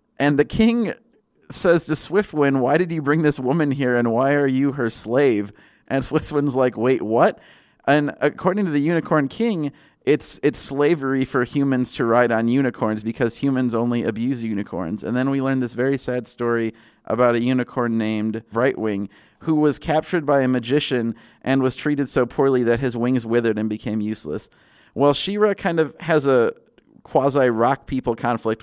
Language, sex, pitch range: English, male, 115-140 Hz